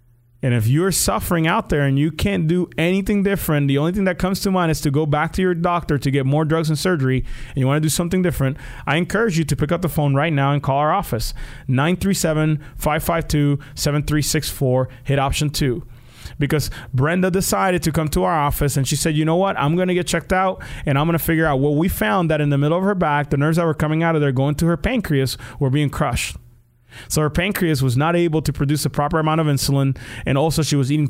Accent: American